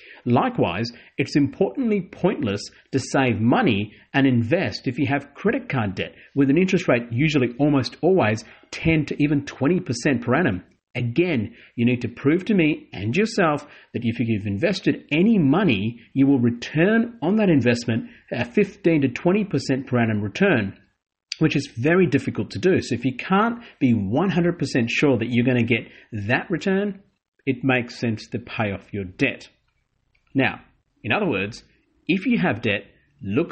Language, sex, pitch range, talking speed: English, male, 115-160 Hz, 165 wpm